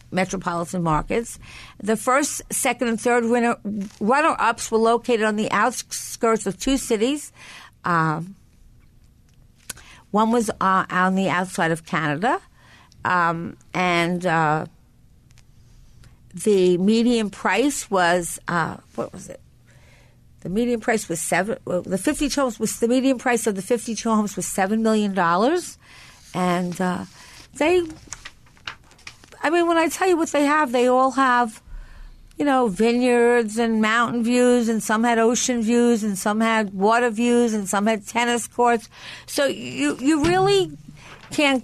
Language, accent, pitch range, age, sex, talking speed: English, American, 195-245 Hz, 50-69, female, 145 wpm